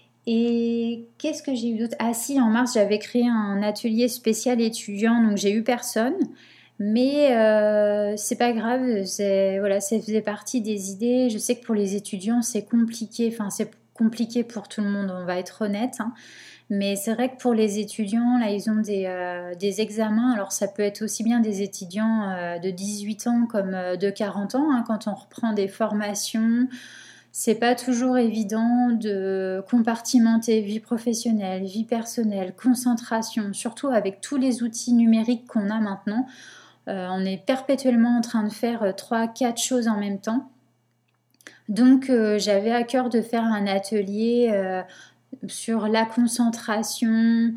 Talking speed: 170 wpm